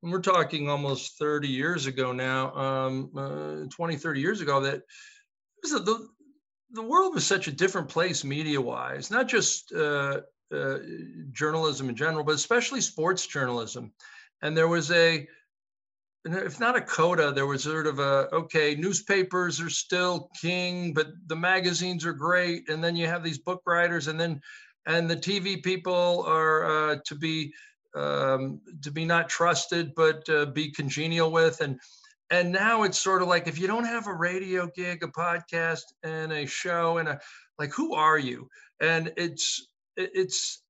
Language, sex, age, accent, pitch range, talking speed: English, male, 50-69, American, 155-195 Hz, 170 wpm